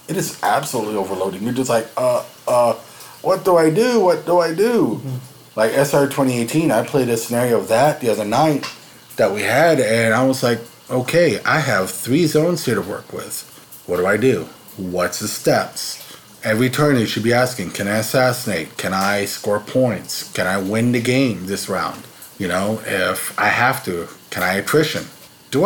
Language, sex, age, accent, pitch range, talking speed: English, male, 30-49, American, 115-150 Hz, 190 wpm